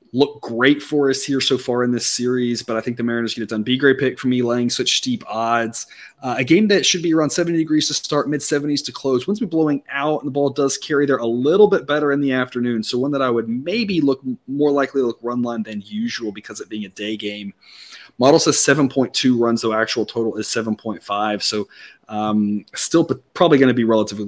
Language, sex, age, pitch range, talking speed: English, male, 30-49, 110-135 Hz, 245 wpm